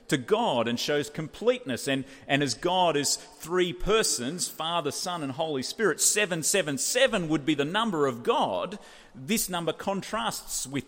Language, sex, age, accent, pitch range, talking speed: English, male, 40-59, Australian, 130-195 Hz, 155 wpm